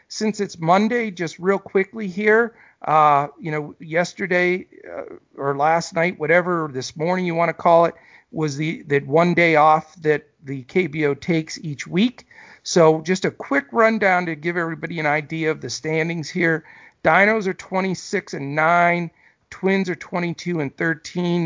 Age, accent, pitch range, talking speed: 50-69, American, 150-185 Hz, 165 wpm